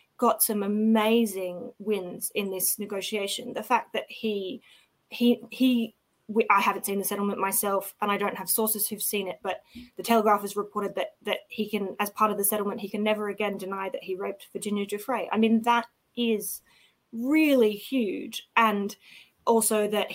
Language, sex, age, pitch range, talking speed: English, female, 20-39, 195-230 Hz, 175 wpm